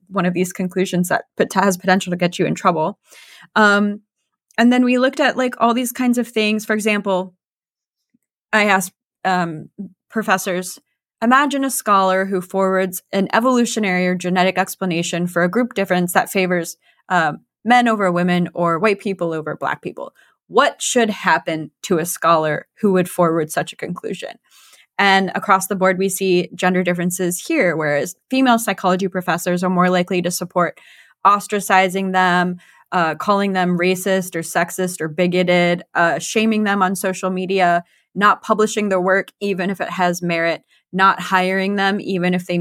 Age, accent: 20-39, American